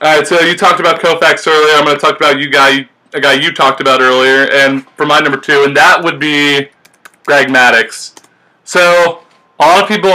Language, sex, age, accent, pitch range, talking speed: English, male, 20-39, American, 135-170 Hz, 215 wpm